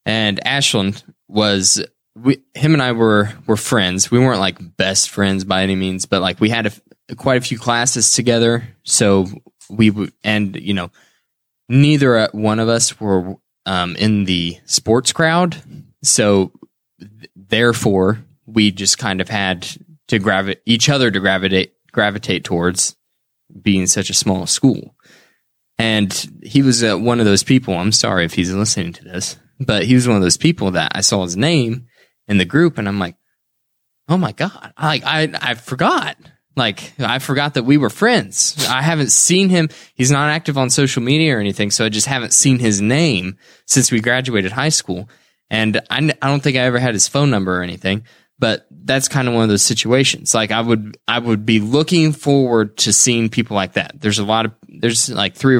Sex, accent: male, American